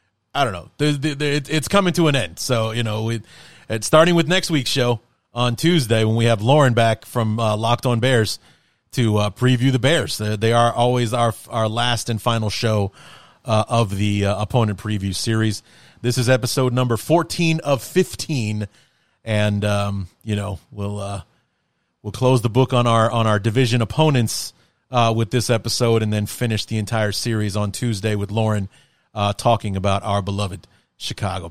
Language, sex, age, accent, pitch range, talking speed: English, male, 30-49, American, 105-125 Hz, 170 wpm